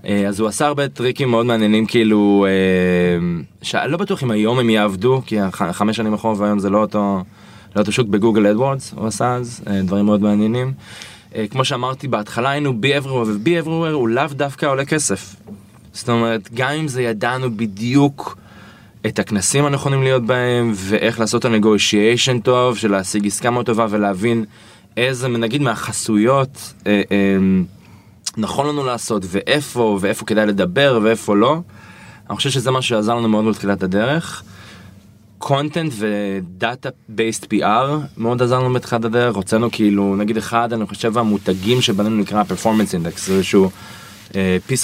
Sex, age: male, 20-39